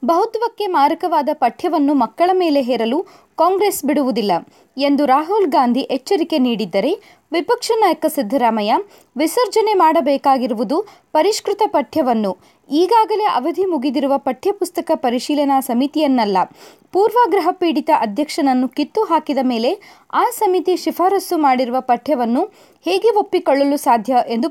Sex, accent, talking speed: female, native, 100 wpm